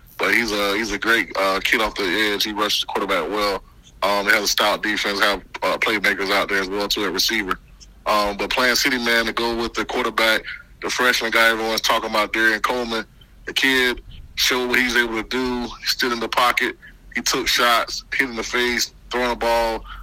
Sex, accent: male, American